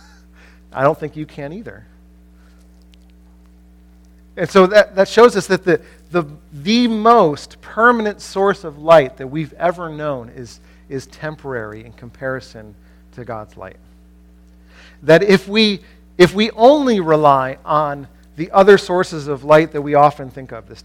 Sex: male